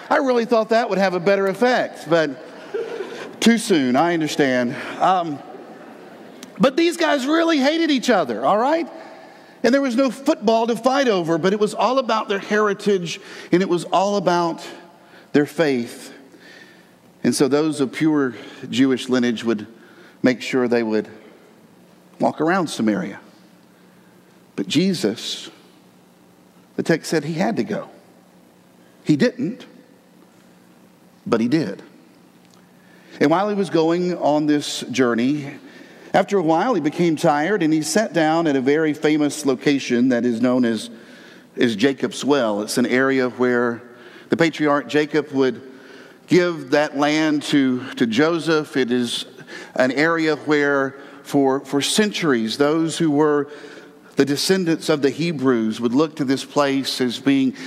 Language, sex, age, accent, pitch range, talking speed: English, male, 50-69, American, 130-190 Hz, 150 wpm